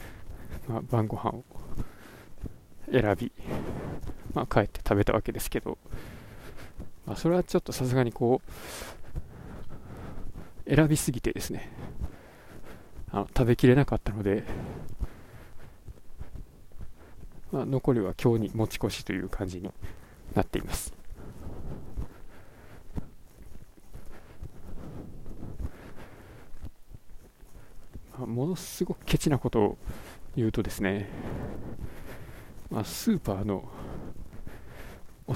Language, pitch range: Japanese, 100-130 Hz